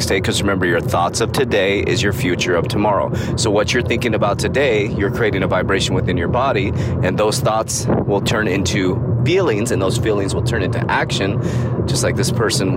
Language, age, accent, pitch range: English, 20-39, American, 110-125 Hz